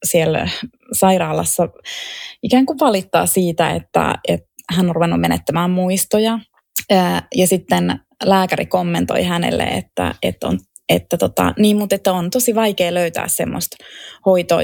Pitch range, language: 175-225 Hz, Finnish